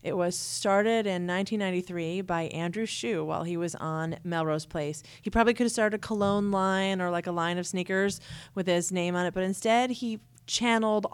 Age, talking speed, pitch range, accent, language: 30-49, 200 wpm, 155-190 Hz, American, English